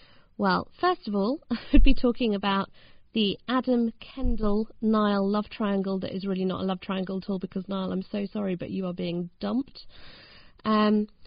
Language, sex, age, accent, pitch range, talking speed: English, female, 30-49, British, 195-265 Hz, 180 wpm